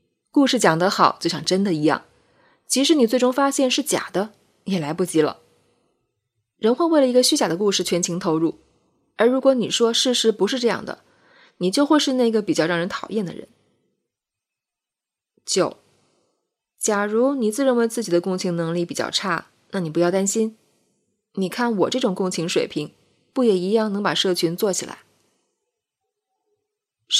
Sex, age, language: female, 20-39, Chinese